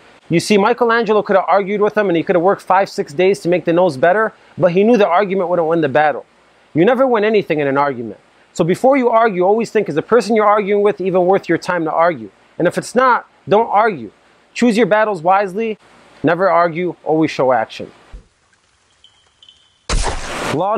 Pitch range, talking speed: 175-215 Hz, 205 wpm